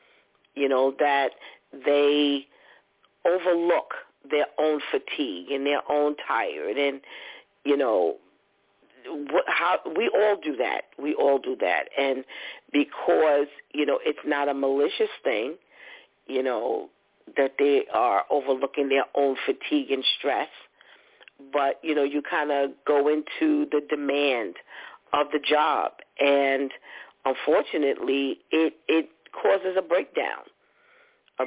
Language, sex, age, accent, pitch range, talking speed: English, female, 40-59, American, 135-175 Hz, 125 wpm